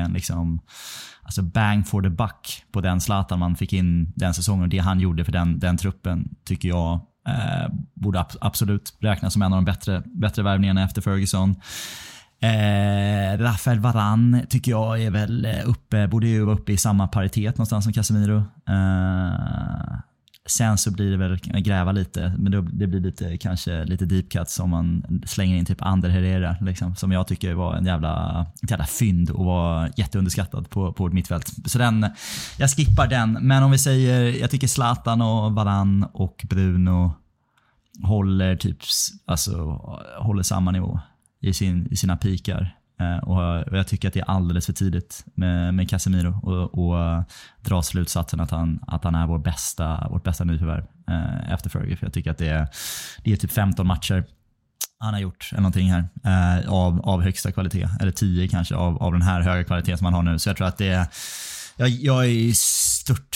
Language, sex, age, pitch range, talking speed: Swedish, male, 20-39, 90-105 Hz, 180 wpm